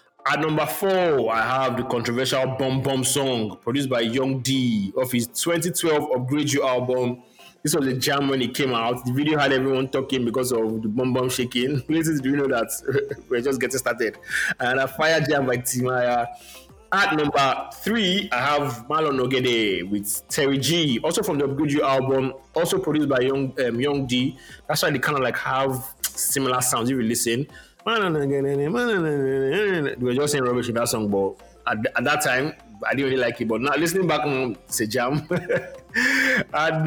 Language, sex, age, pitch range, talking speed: English, male, 20-39, 125-145 Hz, 190 wpm